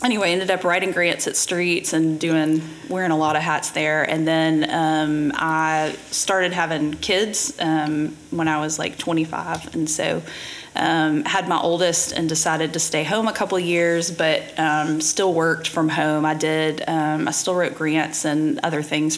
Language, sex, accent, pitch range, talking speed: English, female, American, 155-175 Hz, 180 wpm